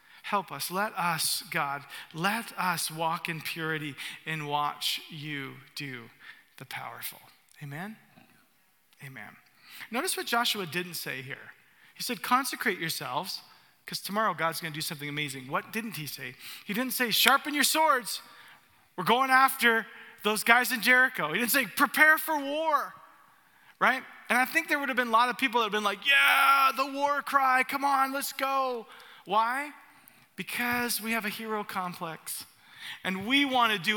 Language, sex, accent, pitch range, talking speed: English, male, American, 170-250 Hz, 170 wpm